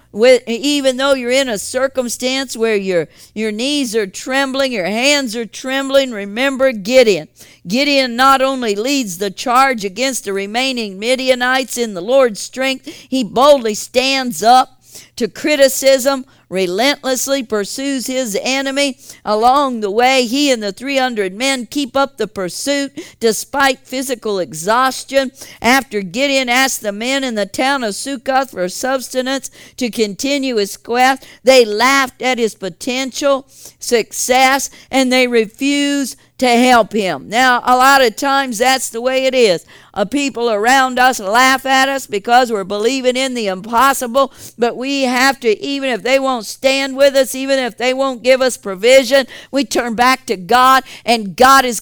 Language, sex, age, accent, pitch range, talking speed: English, female, 50-69, American, 230-270 Hz, 155 wpm